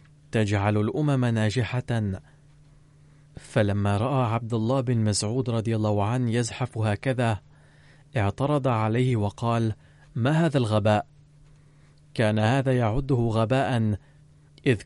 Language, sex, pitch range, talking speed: Arabic, male, 110-145 Hz, 100 wpm